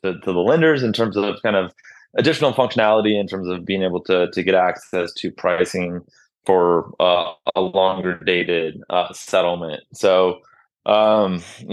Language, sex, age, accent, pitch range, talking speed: English, male, 20-39, American, 95-110 Hz, 155 wpm